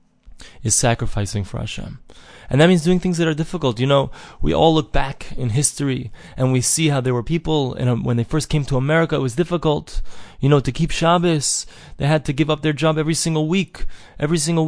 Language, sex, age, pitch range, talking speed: English, male, 20-39, 125-160 Hz, 215 wpm